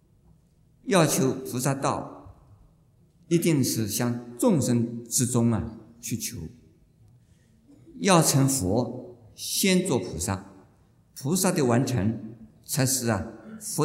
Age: 50-69